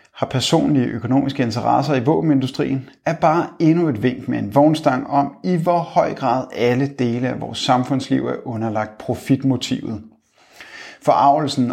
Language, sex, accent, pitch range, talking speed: Danish, male, native, 125-150 Hz, 145 wpm